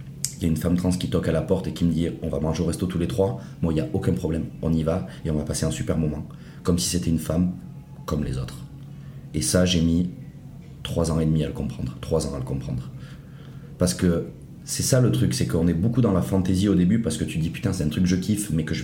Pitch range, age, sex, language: 80-105 Hz, 30-49, male, French